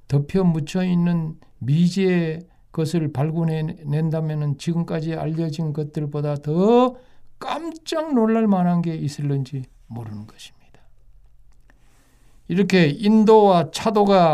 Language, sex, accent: Korean, male, native